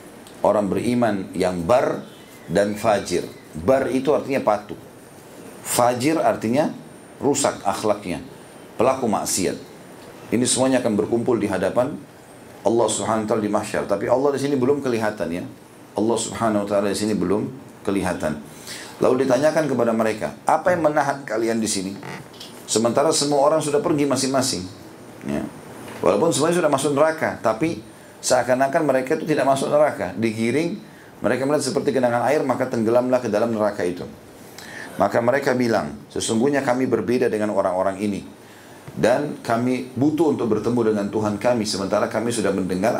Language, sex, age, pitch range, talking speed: Indonesian, male, 40-59, 105-135 Hz, 145 wpm